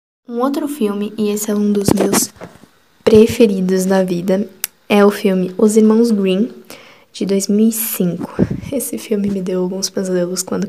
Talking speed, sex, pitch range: 150 wpm, female, 195-230 Hz